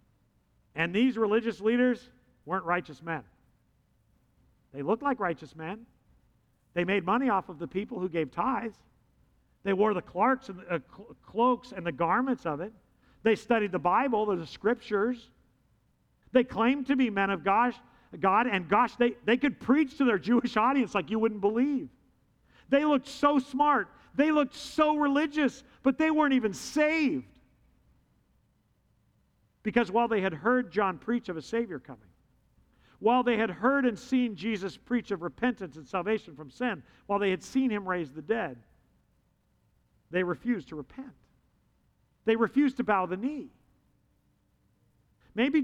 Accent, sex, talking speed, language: American, male, 155 wpm, English